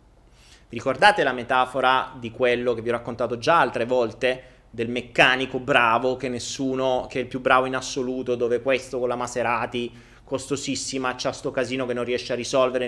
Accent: native